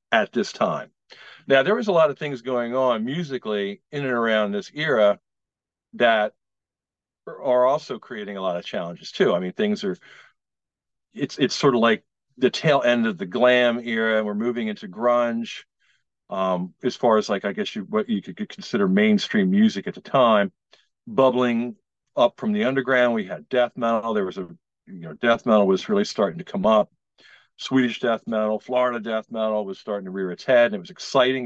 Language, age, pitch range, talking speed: English, 50-69, 115-180 Hz, 195 wpm